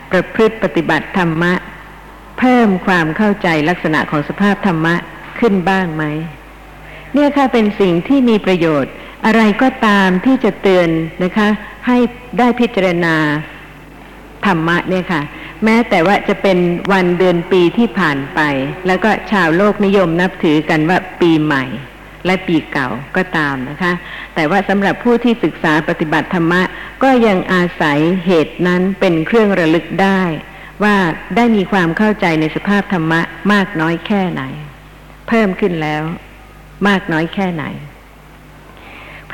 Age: 60-79